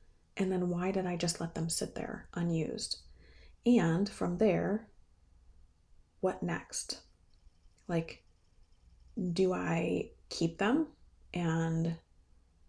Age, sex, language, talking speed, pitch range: 30-49, female, English, 105 wpm, 160-185 Hz